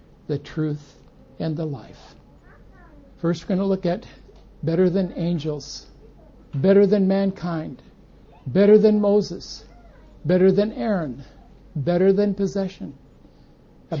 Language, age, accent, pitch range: English, 60-79, American, 150-190 Hz